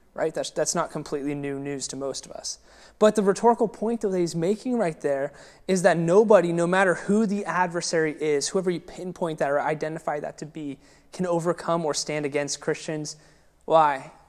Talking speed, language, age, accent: 190 wpm, English, 20-39, American